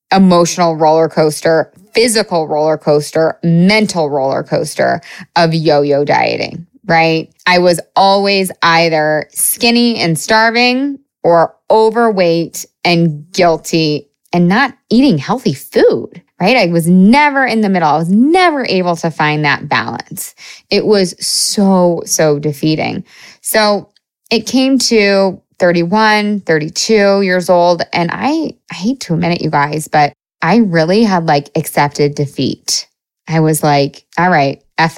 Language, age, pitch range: English, 20-39, 155-210 Hz